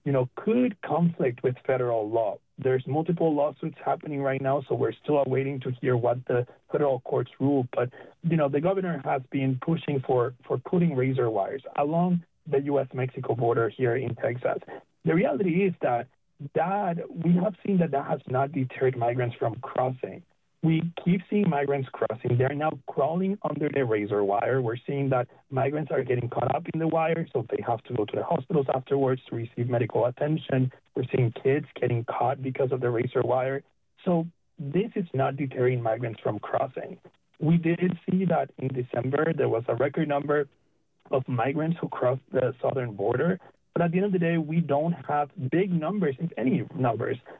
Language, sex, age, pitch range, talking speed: English, male, 30-49, 125-165 Hz, 185 wpm